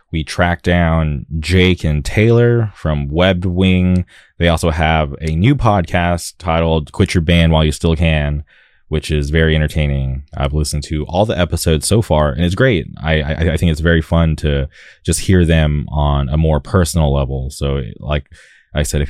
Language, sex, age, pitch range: English, male, 20-39, 75-85 Hz